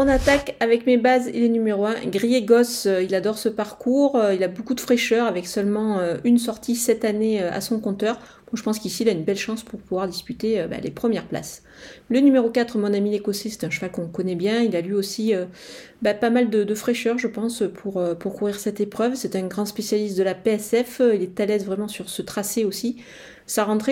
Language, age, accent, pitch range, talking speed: French, 40-59, French, 195-235 Hz, 230 wpm